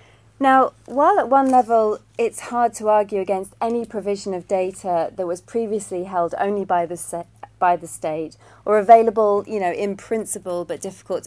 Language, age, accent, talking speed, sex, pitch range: English, 30-49, British, 175 wpm, female, 165-210 Hz